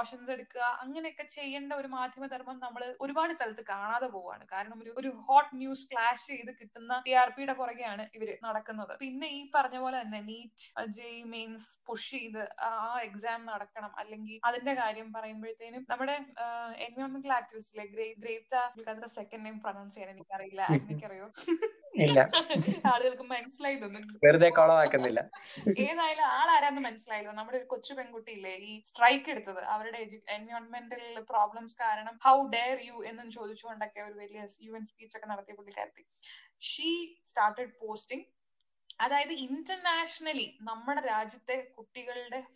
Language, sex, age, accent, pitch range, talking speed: Malayalam, female, 20-39, native, 220-265 Hz, 80 wpm